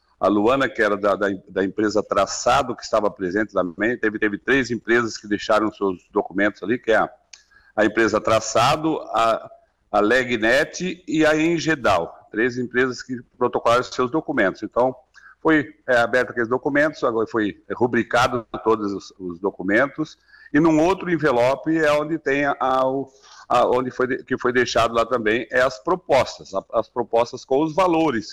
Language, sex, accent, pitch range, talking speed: Portuguese, male, Brazilian, 110-145 Hz, 165 wpm